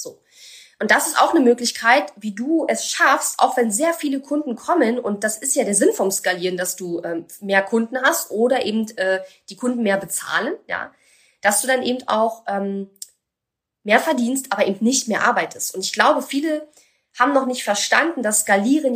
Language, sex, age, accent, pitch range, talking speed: German, female, 20-39, German, 200-270 Hz, 195 wpm